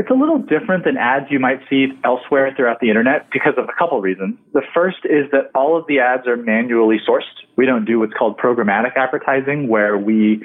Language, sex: English, male